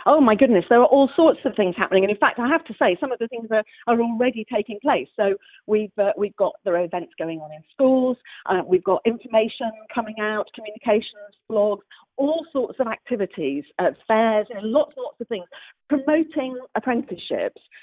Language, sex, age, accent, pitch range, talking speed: English, female, 40-59, British, 190-260 Hz, 205 wpm